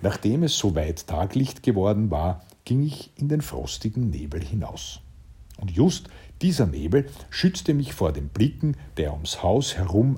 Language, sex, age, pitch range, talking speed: German, male, 50-69, 85-120 Hz, 155 wpm